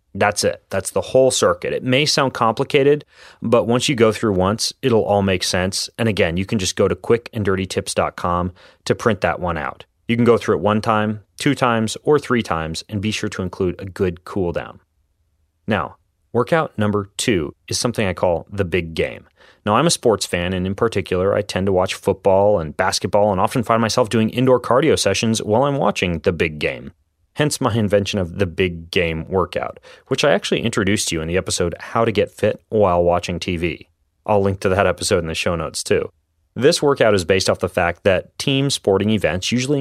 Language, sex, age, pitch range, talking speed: English, male, 30-49, 90-120 Hz, 210 wpm